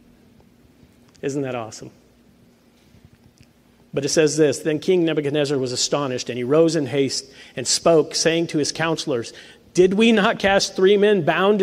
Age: 50-69